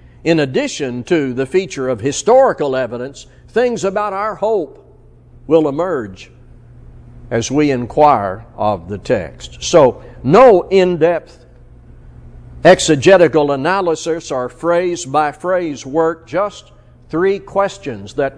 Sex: male